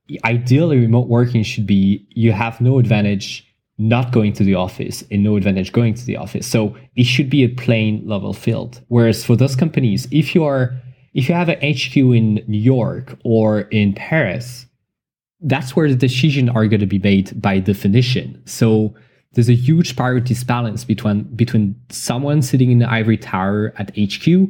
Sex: male